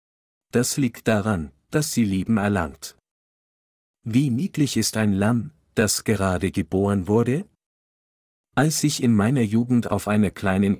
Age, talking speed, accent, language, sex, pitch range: 50-69, 135 wpm, German, German, male, 100-125 Hz